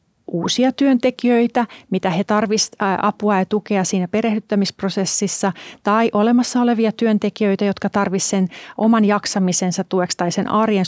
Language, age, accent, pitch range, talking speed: Finnish, 30-49, native, 185-225 Hz, 125 wpm